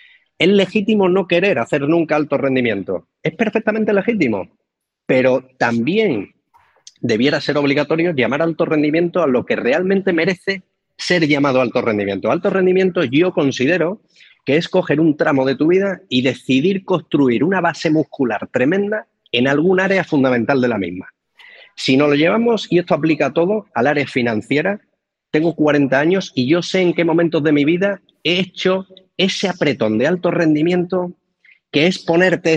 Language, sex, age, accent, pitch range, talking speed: Spanish, male, 40-59, Spanish, 135-185 Hz, 160 wpm